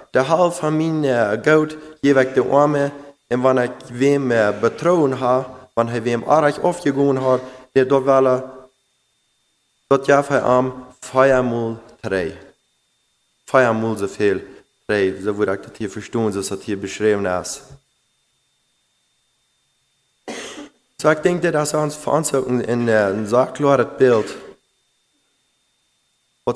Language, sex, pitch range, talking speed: English, male, 120-140 Hz, 130 wpm